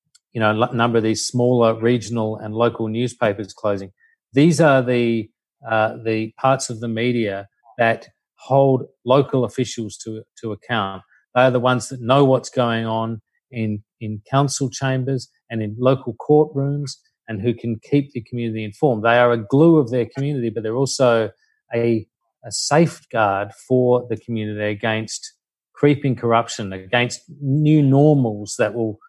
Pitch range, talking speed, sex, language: 110-130 Hz, 155 wpm, male, English